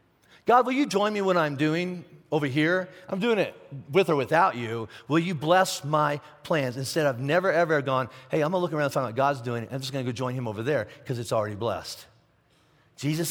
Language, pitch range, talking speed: English, 125-175 Hz, 225 wpm